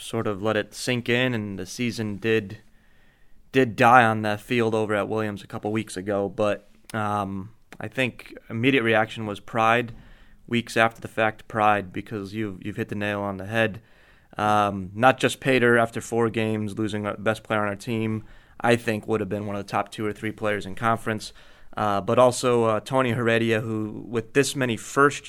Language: English